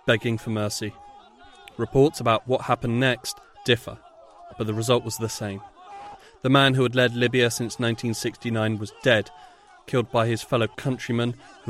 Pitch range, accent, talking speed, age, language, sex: 110-130 Hz, British, 160 wpm, 30-49, English, male